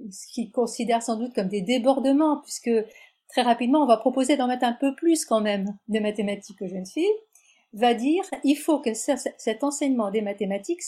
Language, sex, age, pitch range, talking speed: French, female, 50-69, 205-265 Hz, 200 wpm